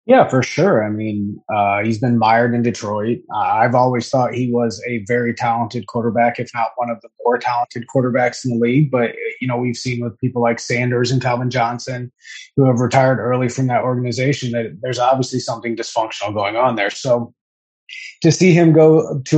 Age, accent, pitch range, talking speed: 30-49, American, 120-140 Hz, 200 wpm